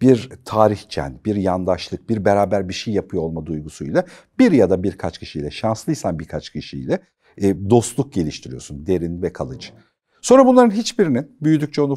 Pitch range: 105-165 Hz